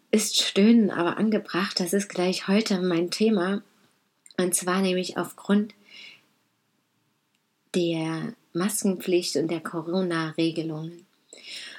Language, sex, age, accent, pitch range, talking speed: German, female, 20-39, German, 180-215 Hz, 100 wpm